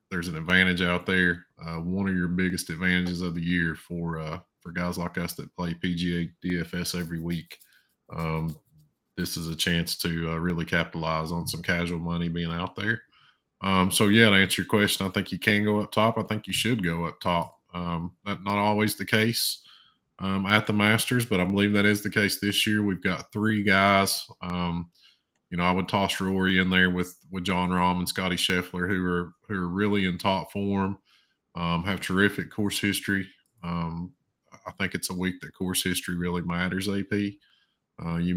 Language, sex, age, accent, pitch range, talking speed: English, male, 20-39, American, 85-95 Hz, 200 wpm